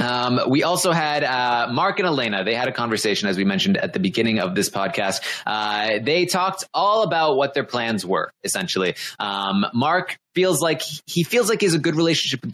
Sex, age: male, 20-39